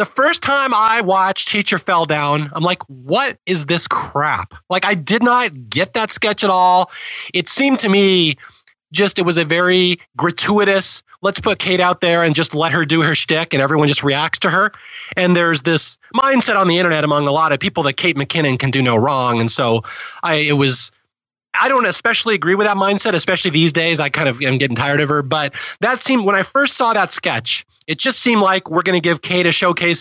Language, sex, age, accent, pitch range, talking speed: English, male, 30-49, American, 145-195 Hz, 225 wpm